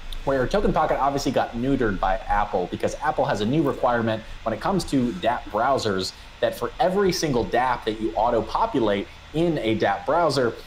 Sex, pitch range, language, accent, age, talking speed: male, 100-130 Hz, English, American, 30-49, 180 wpm